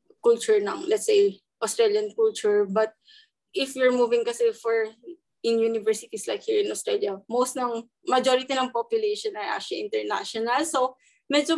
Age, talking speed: 20-39, 145 wpm